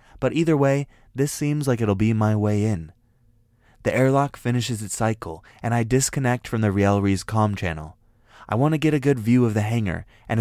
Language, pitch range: English, 100-125 Hz